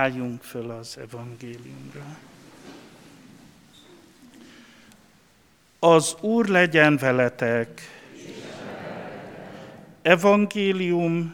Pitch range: 125-165 Hz